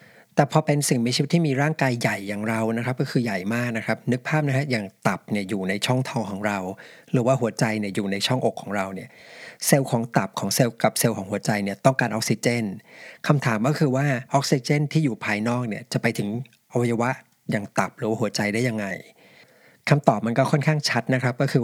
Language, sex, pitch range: Thai, male, 110-140 Hz